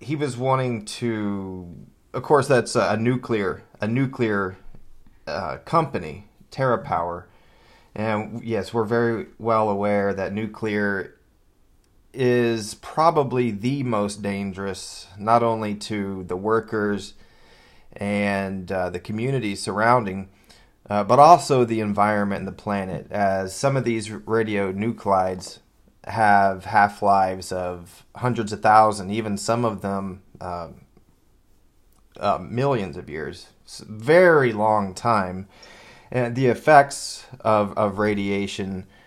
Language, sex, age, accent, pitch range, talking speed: English, male, 30-49, American, 95-115 Hz, 120 wpm